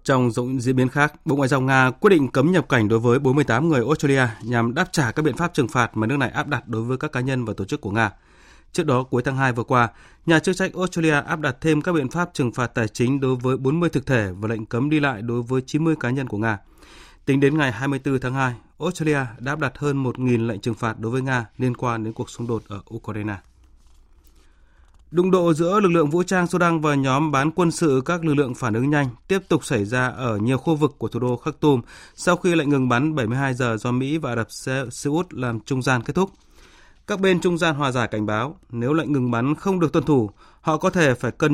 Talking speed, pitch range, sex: 255 wpm, 120-155 Hz, male